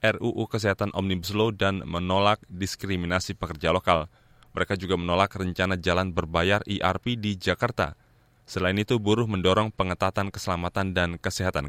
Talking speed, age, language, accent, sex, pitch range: 135 wpm, 20-39, Indonesian, native, male, 95-115 Hz